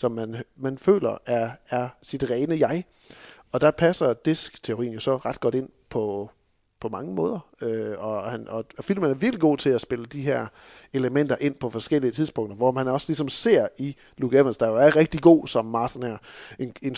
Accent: native